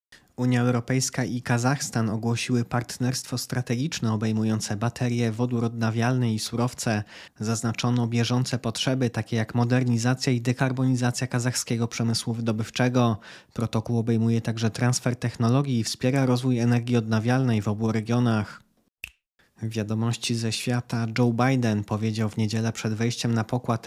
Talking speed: 125 wpm